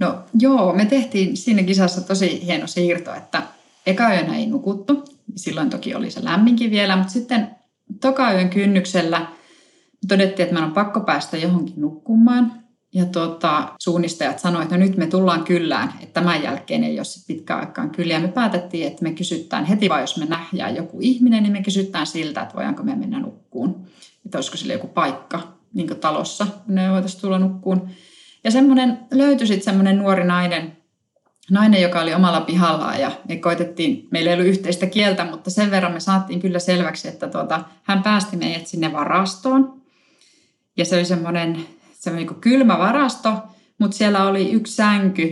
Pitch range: 175-230 Hz